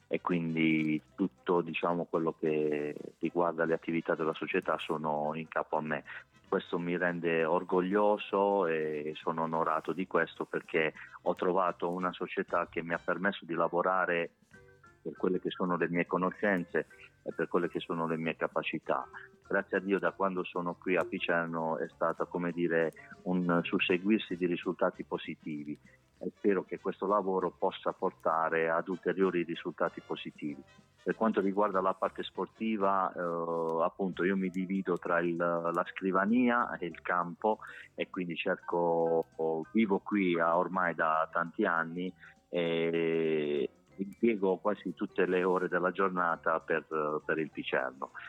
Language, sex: Italian, male